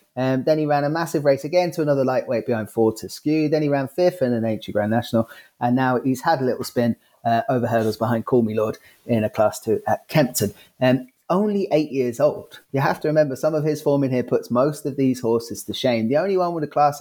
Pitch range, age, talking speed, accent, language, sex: 115-150 Hz, 30-49, 245 wpm, British, English, male